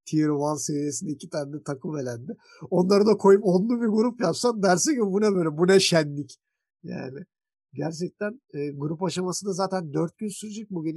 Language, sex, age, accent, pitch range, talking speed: Turkish, male, 50-69, native, 140-185 Hz, 180 wpm